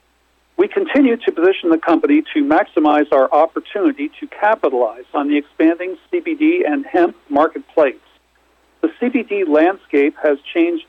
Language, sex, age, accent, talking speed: English, male, 50-69, American, 130 wpm